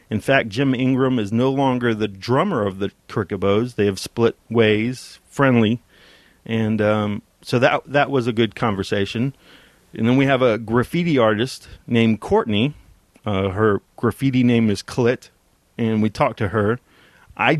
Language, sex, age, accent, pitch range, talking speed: English, male, 40-59, American, 105-125 Hz, 160 wpm